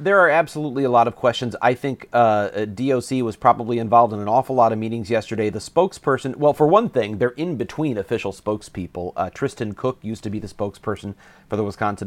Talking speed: 215 wpm